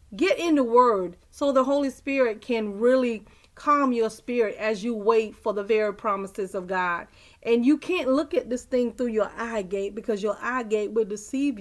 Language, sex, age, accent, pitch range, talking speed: English, female, 40-59, American, 215-255 Hz, 200 wpm